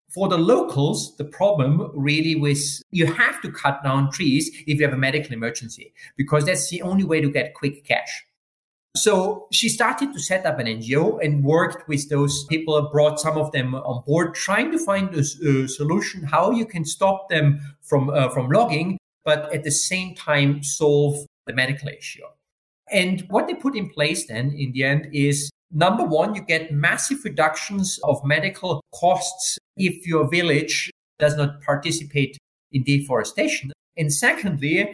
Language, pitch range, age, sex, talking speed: English, 140-175 Hz, 30-49, male, 175 wpm